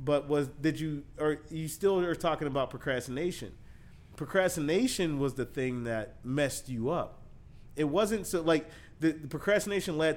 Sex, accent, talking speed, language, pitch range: male, American, 160 wpm, English, 120-150 Hz